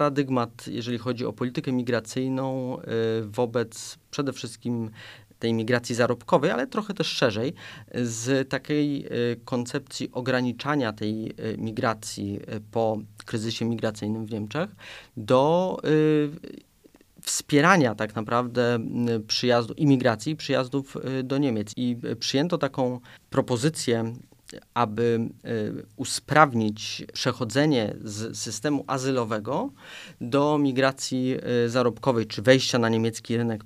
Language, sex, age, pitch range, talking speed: Polish, male, 30-49, 110-135 Hz, 100 wpm